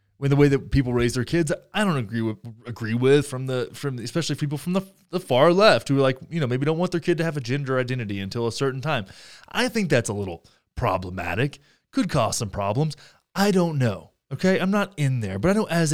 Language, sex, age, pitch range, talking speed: English, male, 20-39, 130-185 Hz, 250 wpm